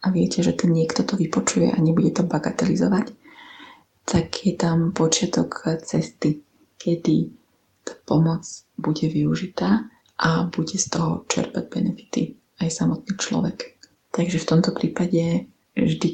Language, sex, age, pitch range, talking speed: Slovak, female, 20-39, 165-190 Hz, 130 wpm